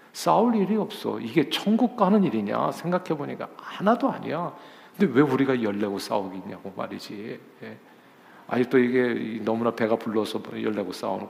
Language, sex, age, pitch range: Korean, male, 50-69, 110-155 Hz